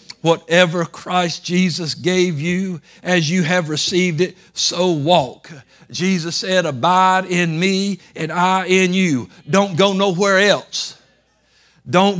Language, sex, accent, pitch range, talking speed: English, male, American, 165-195 Hz, 130 wpm